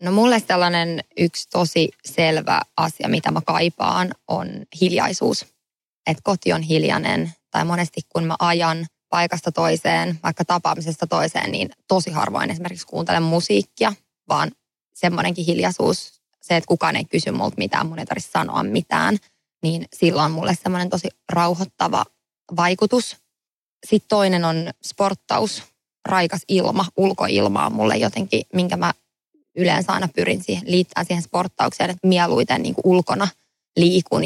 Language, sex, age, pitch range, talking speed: English, female, 20-39, 165-190 Hz, 135 wpm